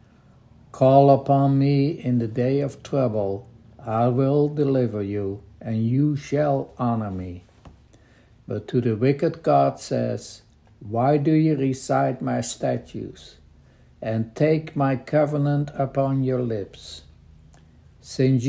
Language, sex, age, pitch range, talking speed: English, male, 60-79, 115-140 Hz, 120 wpm